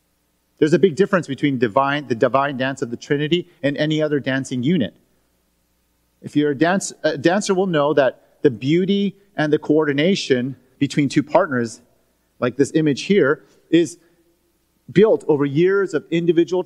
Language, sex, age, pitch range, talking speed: English, male, 40-59, 120-165 Hz, 155 wpm